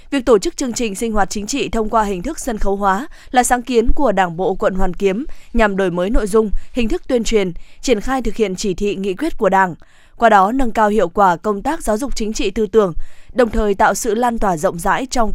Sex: female